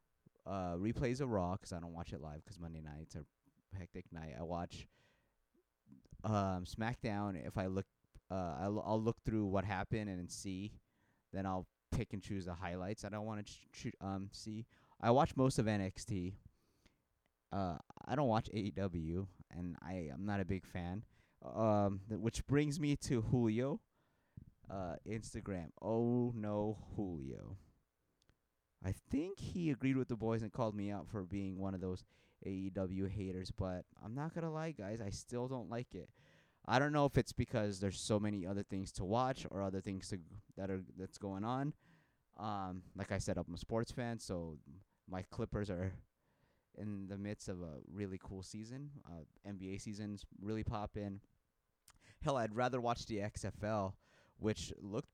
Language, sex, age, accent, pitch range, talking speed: English, male, 30-49, American, 95-115 Hz, 175 wpm